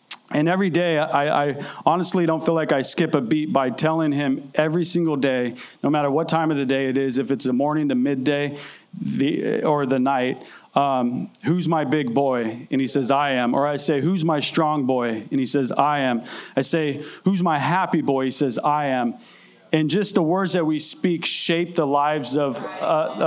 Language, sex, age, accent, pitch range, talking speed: English, male, 30-49, American, 140-175 Hz, 210 wpm